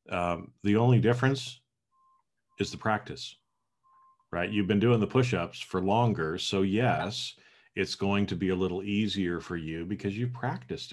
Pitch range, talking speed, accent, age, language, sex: 90-110 Hz, 165 wpm, American, 40-59, English, male